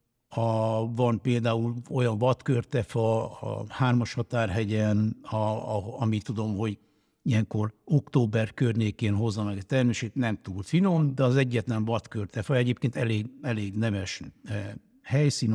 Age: 60-79